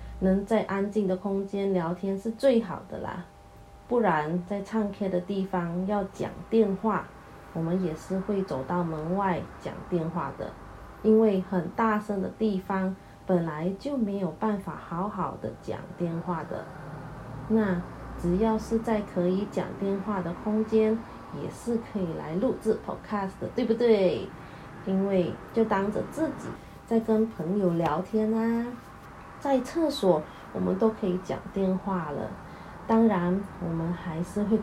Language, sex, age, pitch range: Chinese, female, 20-39, 175-215 Hz